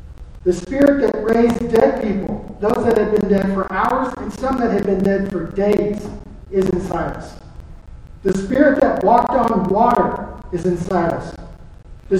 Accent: American